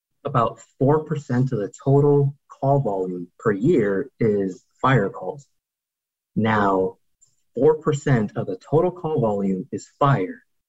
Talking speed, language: 120 wpm, English